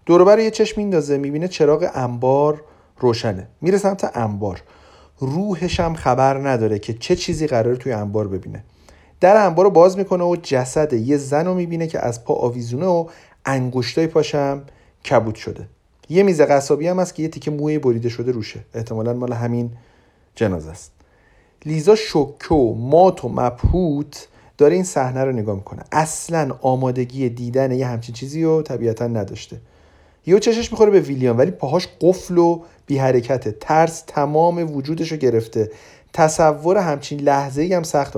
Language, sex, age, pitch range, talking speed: Persian, male, 40-59, 120-175 Hz, 150 wpm